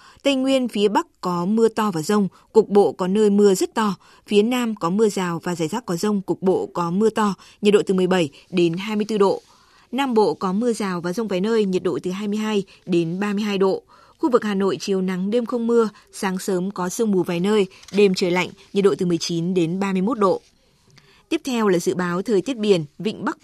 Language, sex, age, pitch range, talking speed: Vietnamese, female, 20-39, 185-220 Hz, 230 wpm